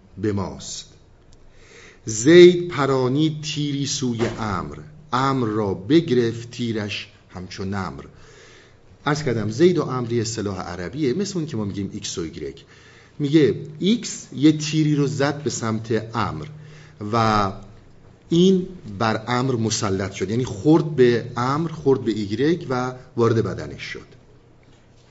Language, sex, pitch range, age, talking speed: Persian, male, 110-150 Hz, 50-69, 130 wpm